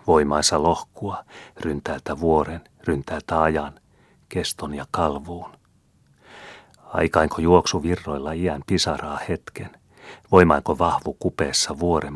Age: 40-59